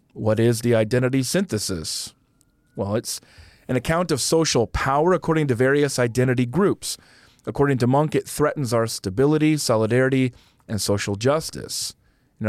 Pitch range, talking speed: 110-145 Hz, 140 wpm